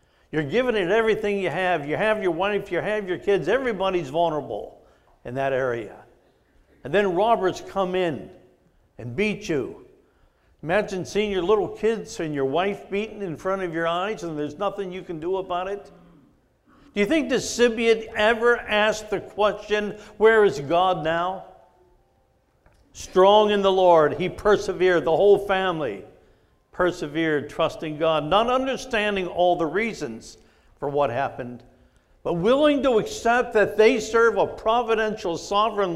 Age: 60-79